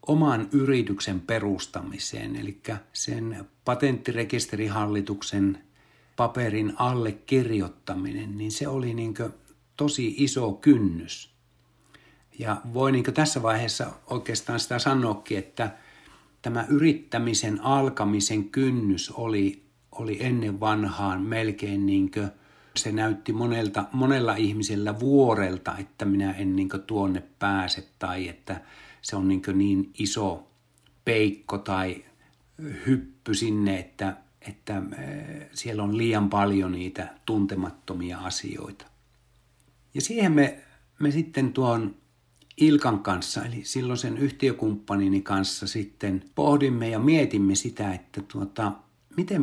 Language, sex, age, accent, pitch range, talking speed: Finnish, male, 60-79, native, 100-130 Hz, 105 wpm